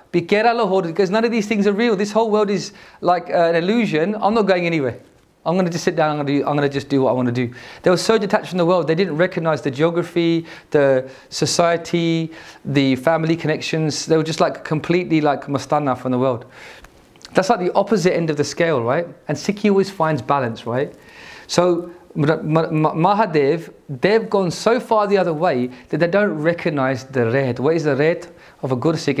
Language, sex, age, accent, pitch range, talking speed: English, male, 30-49, British, 135-175 Hz, 210 wpm